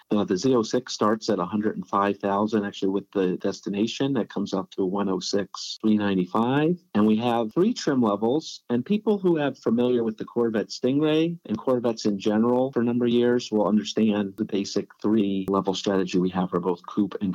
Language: English